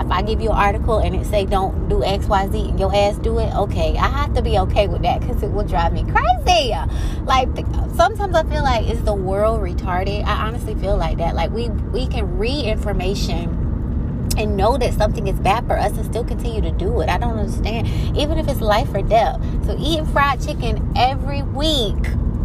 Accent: American